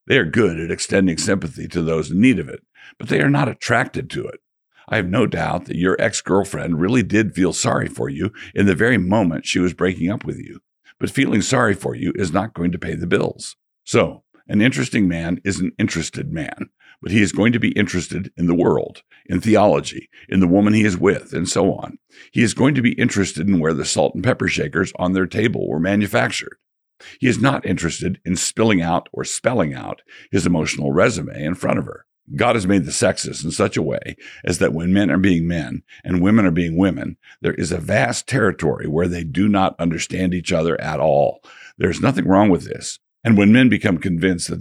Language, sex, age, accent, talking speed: English, male, 60-79, American, 220 wpm